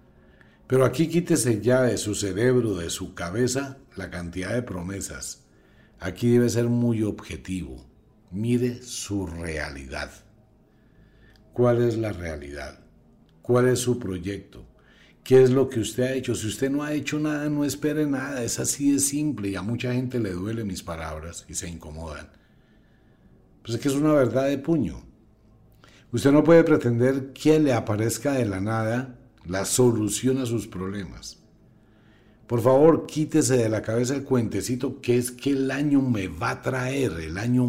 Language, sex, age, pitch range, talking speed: English, male, 60-79, 95-130 Hz, 165 wpm